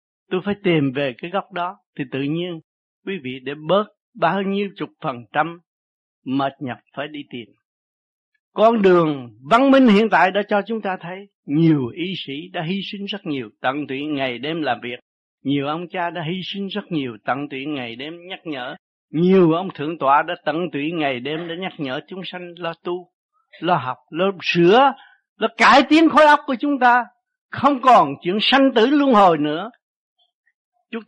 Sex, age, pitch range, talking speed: male, 60-79, 150-220 Hz, 195 wpm